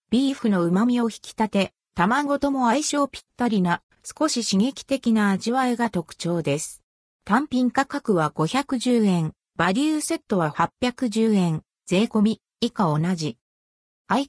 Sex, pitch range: female, 175-265 Hz